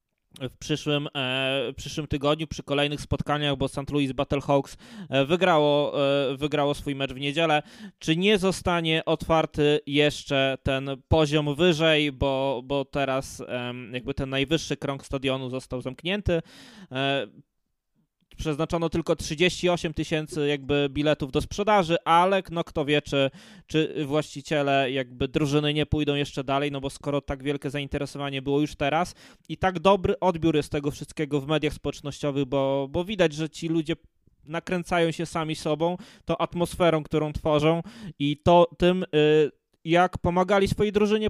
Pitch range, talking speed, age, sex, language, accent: 145-175 Hz, 150 wpm, 20-39, male, Polish, native